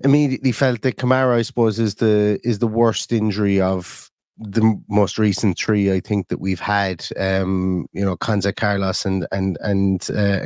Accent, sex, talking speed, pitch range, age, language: British, male, 180 wpm, 110-140 Hz, 30-49, English